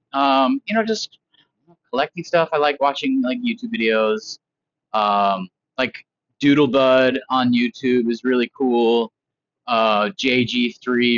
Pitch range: 120-175 Hz